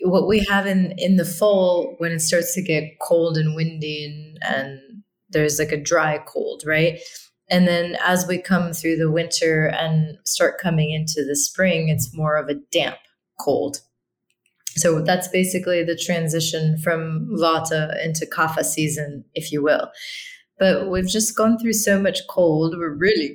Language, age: English, 20-39